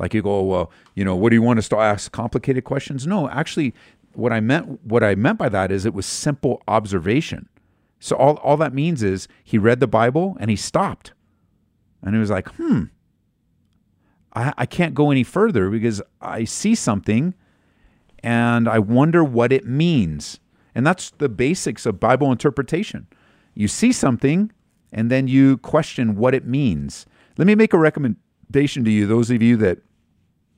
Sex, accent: male, American